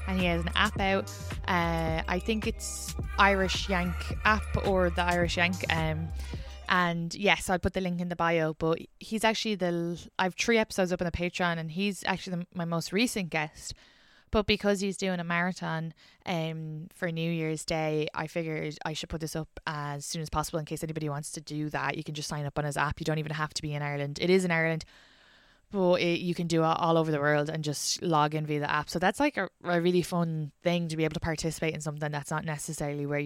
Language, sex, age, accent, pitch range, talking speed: English, female, 20-39, Irish, 150-175 Hz, 240 wpm